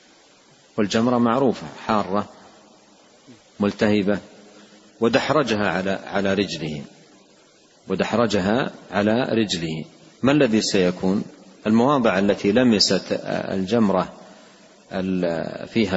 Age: 50-69